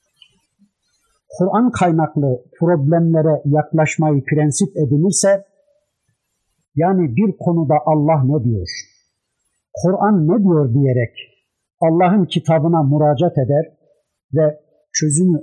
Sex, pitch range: male, 145-180 Hz